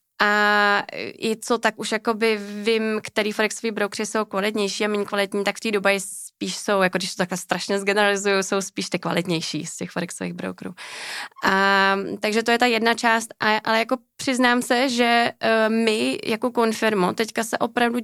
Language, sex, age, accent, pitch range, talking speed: Czech, female, 20-39, native, 200-225 Hz, 175 wpm